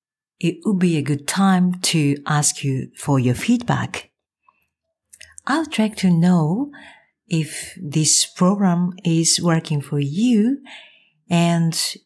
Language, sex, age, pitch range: Japanese, female, 50-69, 145-220 Hz